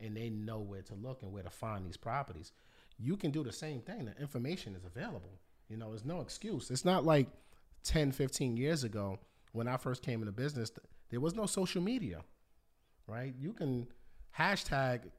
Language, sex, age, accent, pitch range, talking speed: English, male, 30-49, American, 100-135 Hz, 195 wpm